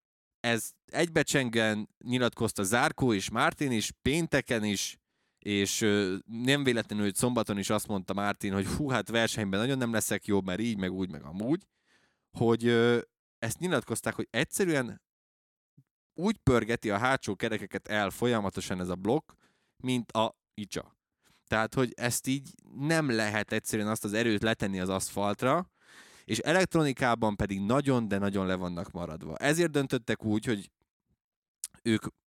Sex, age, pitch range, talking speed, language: male, 20-39, 105-130 Hz, 145 wpm, Hungarian